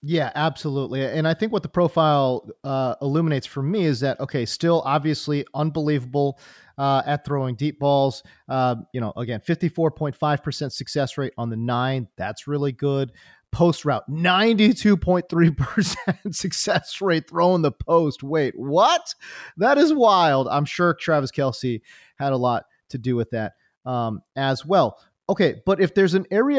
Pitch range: 135-195 Hz